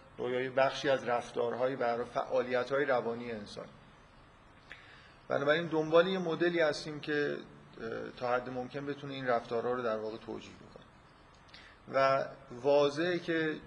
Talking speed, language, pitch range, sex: 125 wpm, Persian, 120-145 Hz, male